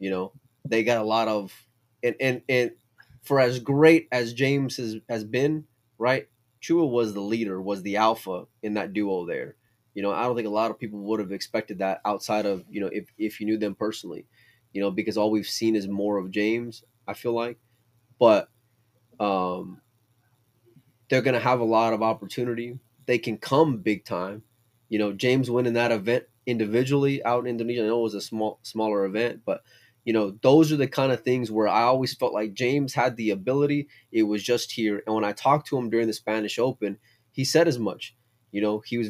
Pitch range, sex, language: 105-120 Hz, male, English